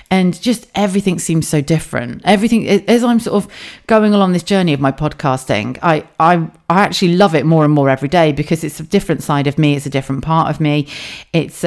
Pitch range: 150-200 Hz